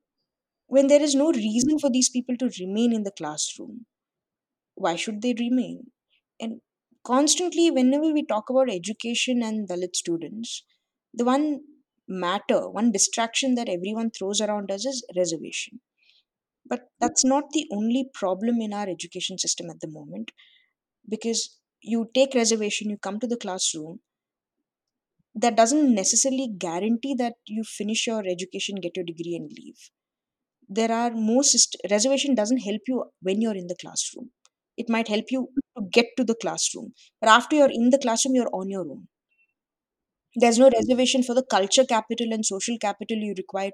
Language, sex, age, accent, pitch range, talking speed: Hindi, female, 20-39, native, 200-260 Hz, 165 wpm